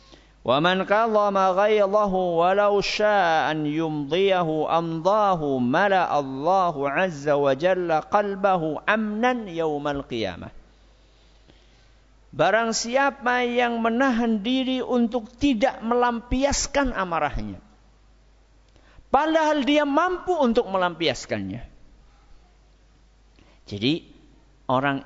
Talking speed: 75 wpm